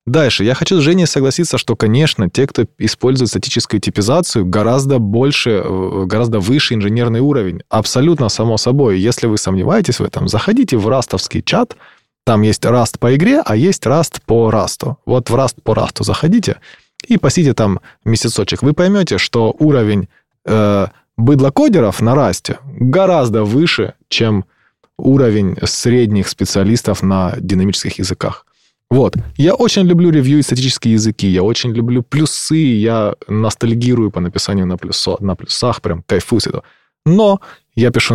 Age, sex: 20-39, male